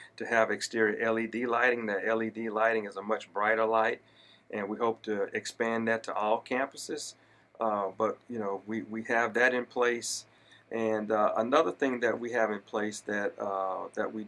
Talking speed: 190 wpm